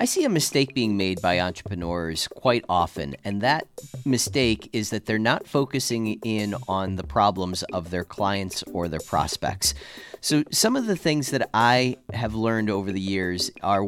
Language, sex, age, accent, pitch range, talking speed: English, male, 40-59, American, 100-130 Hz, 175 wpm